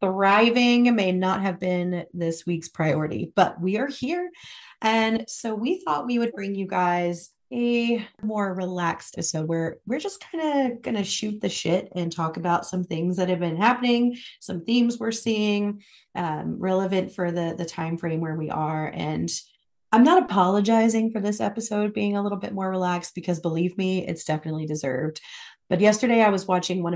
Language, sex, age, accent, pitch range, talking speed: English, female, 30-49, American, 165-215 Hz, 185 wpm